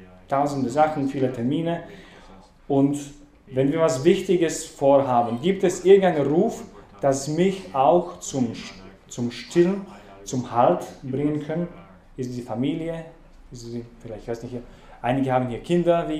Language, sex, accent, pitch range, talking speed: English, male, German, 120-155 Hz, 150 wpm